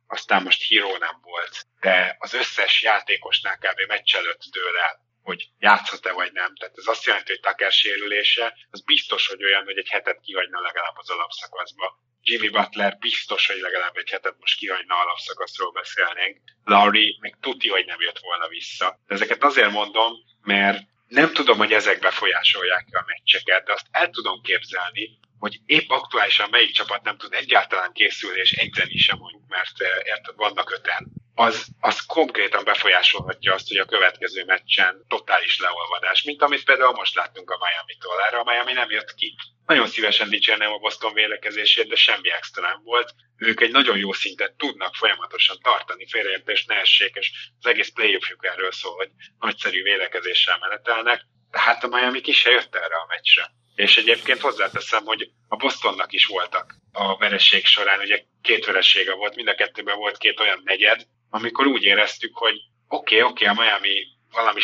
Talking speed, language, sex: 175 wpm, Hungarian, male